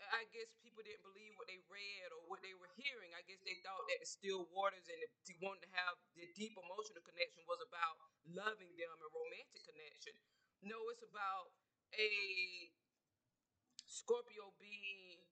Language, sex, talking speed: English, female, 155 wpm